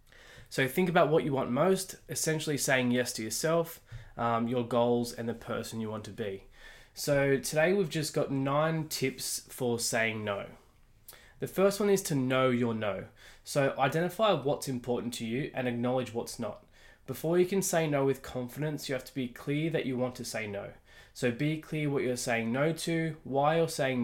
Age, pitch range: 20-39, 120-155 Hz